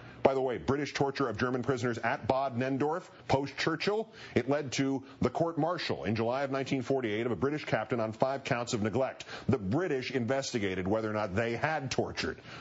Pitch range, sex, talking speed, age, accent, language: 110-140 Hz, male, 185 wpm, 40-59, American, English